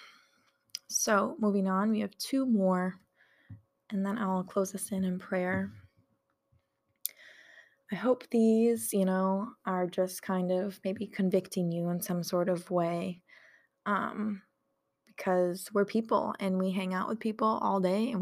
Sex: female